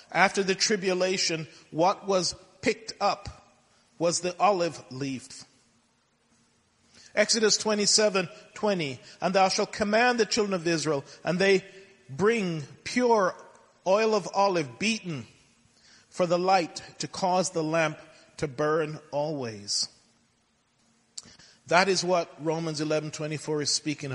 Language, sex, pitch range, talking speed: English, male, 150-195 Hz, 125 wpm